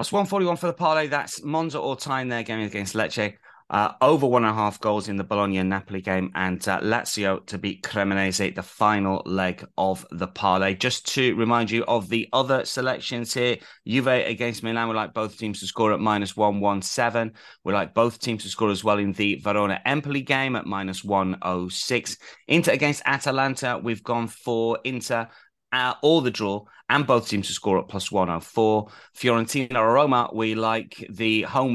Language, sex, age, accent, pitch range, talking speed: English, male, 30-49, British, 100-125 Hz, 200 wpm